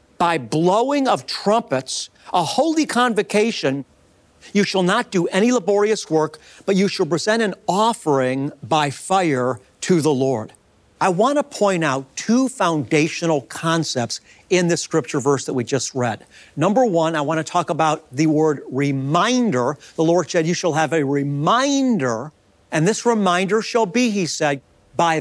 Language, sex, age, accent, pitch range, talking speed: English, male, 50-69, American, 150-210 Hz, 160 wpm